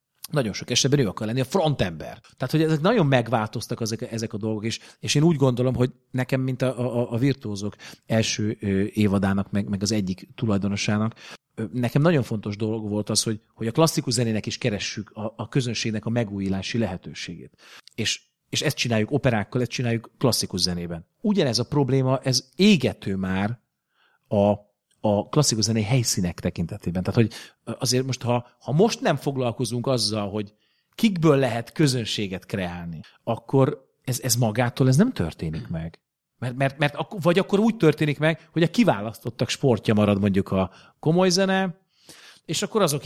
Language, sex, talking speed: Hungarian, male, 165 wpm